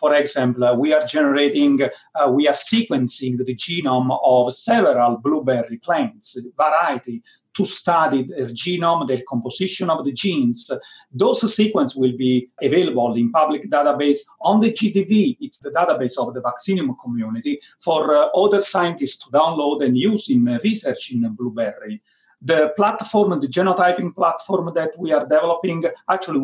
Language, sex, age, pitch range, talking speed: English, male, 40-59, 130-220 Hz, 150 wpm